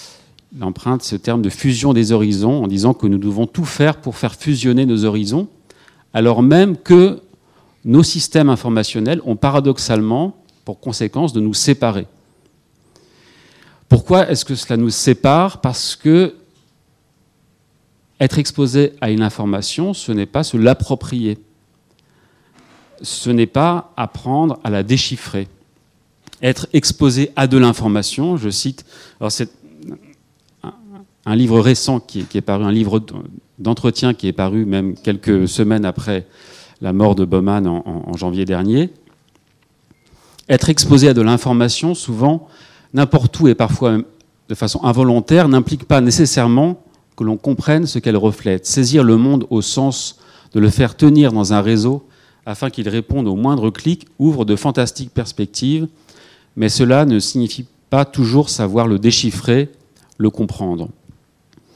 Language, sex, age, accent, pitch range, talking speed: French, male, 40-59, French, 110-145 Hz, 140 wpm